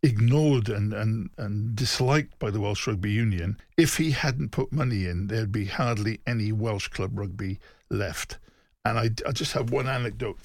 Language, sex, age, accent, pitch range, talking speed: English, male, 50-69, British, 105-135 Hz, 180 wpm